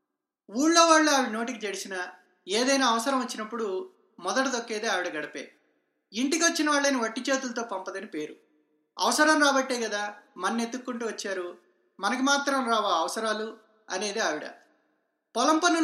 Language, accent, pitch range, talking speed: Telugu, native, 210-290 Hz, 115 wpm